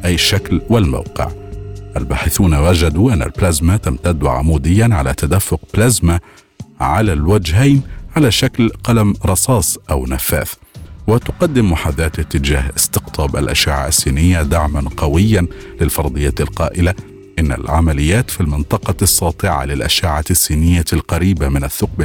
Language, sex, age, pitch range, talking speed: Arabic, male, 50-69, 75-100 Hz, 110 wpm